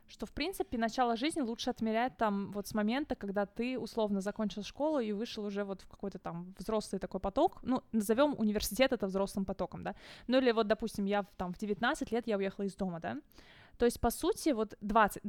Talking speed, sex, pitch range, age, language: 210 wpm, female, 200-240 Hz, 20-39, Russian